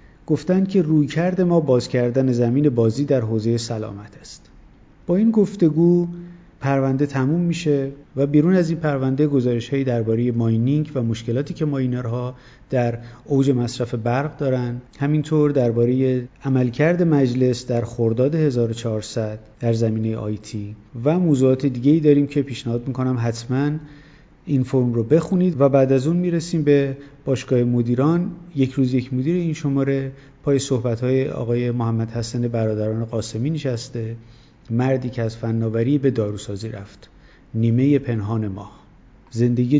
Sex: male